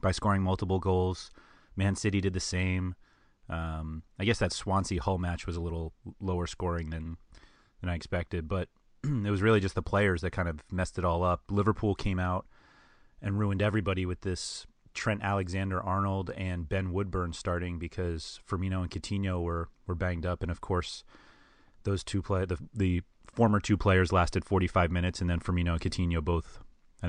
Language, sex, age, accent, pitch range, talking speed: English, male, 30-49, American, 85-100 Hz, 180 wpm